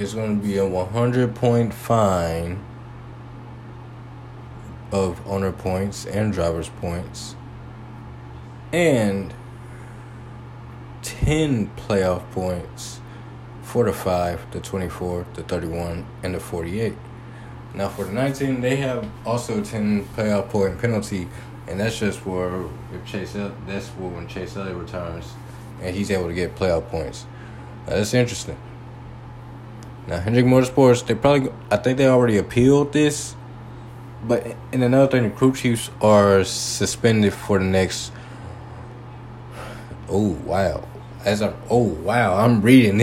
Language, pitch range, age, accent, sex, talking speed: English, 95-120 Hz, 20-39, American, male, 125 wpm